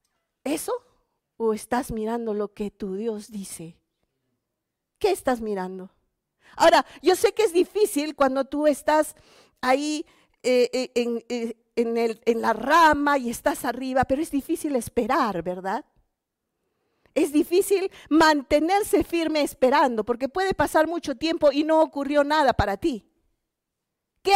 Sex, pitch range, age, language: female, 235-315 Hz, 50-69, Spanish